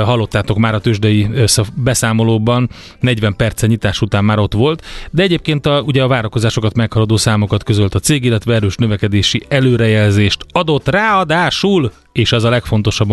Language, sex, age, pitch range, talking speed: Hungarian, male, 30-49, 105-130 Hz, 145 wpm